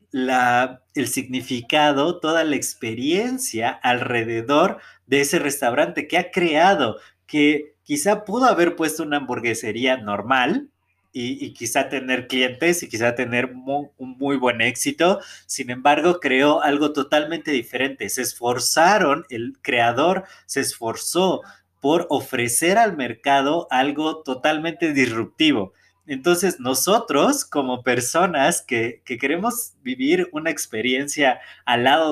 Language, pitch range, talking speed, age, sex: Spanish, 125-165 Hz, 120 wpm, 30-49, male